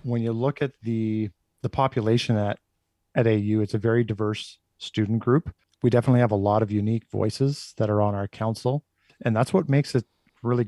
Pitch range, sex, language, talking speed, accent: 110-125 Hz, male, English, 195 wpm, American